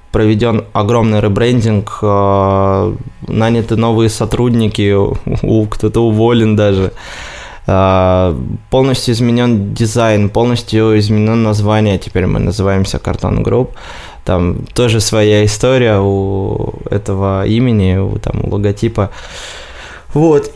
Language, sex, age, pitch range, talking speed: Russian, male, 20-39, 100-120 Hz, 95 wpm